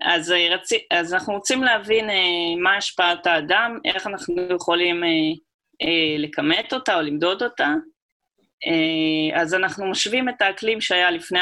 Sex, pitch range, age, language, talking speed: female, 165-235 Hz, 20-39, Hebrew, 145 wpm